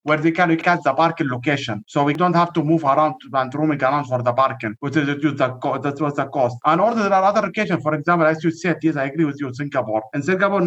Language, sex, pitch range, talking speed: English, male, 140-175 Hz, 260 wpm